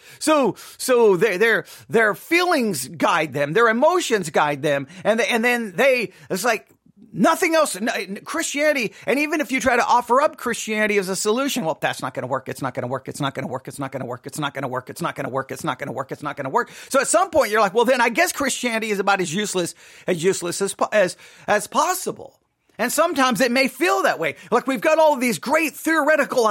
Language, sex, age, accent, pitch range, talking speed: English, male, 40-59, American, 200-280 Hz, 245 wpm